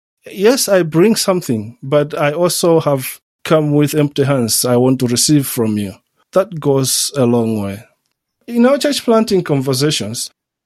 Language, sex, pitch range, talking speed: English, male, 120-165 Hz, 160 wpm